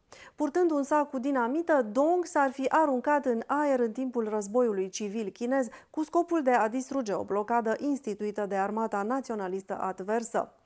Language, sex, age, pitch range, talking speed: Romanian, female, 30-49, 210-280 Hz, 160 wpm